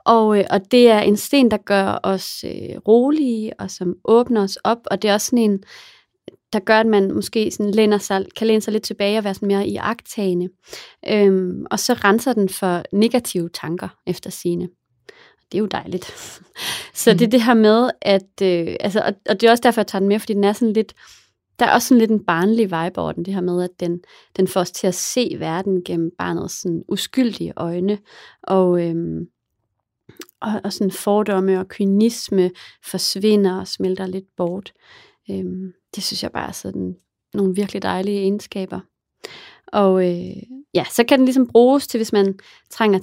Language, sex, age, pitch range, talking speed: English, female, 30-49, 185-225 Hz, 190 wpm